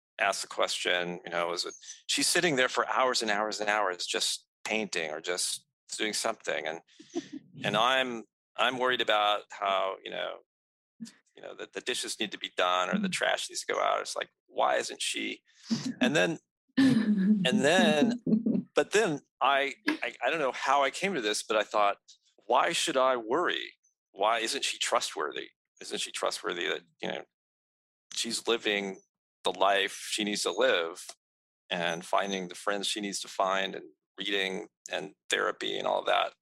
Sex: male